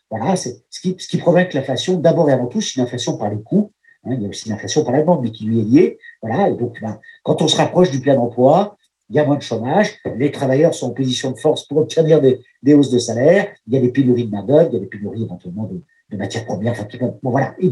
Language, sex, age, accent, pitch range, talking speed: French, male, 50-69, French, 130-185 Hz, 290 wpm